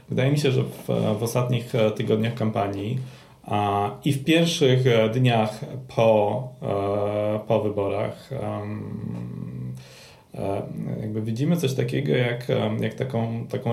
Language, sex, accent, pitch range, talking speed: Polish, male, native, 100-115 Hz, 120 wpm